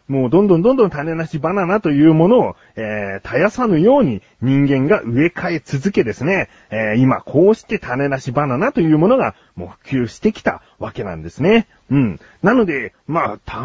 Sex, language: male, Japanese